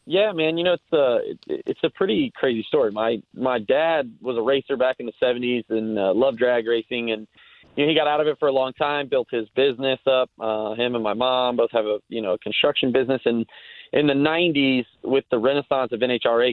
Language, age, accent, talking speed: English, 30-49, American, 230 wpm